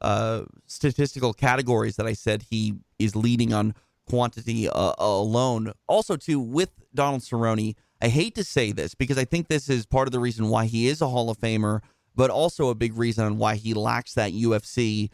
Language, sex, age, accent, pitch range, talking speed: English, male, 30-49, American, 110-135 Hz, 200 wpm